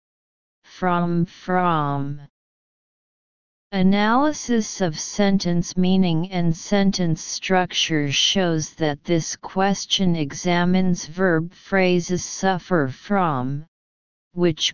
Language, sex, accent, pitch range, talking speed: English, female, American, 155-195 Hz, 75 wpm